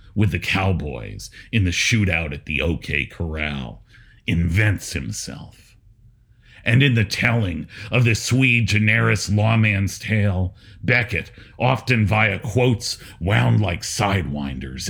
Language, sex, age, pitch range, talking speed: English, male, 50-69, 95-115 Hz, 115 wpm